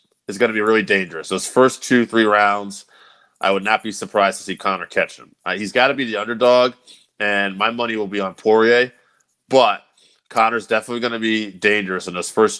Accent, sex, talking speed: American, male, 215 wpm